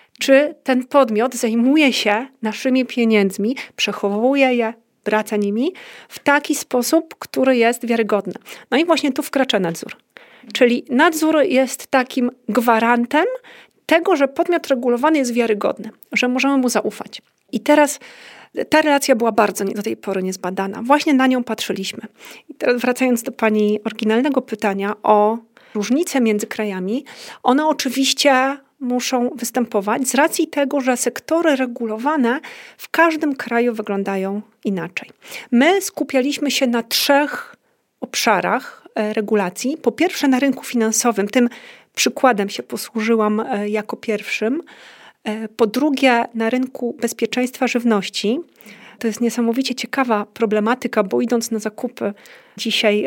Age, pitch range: 40-59, 220-270 Hz